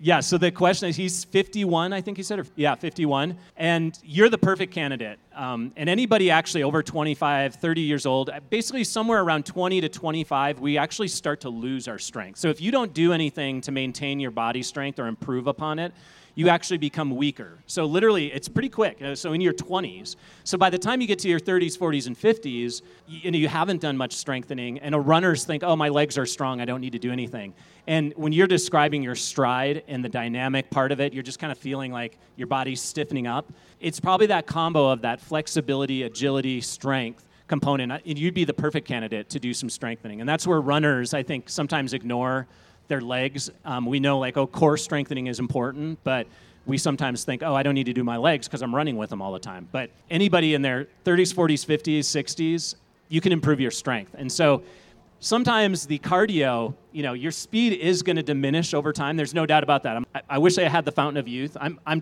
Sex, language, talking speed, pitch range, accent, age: male, English, 220 wpm, 130-170 Hz, American, 30-49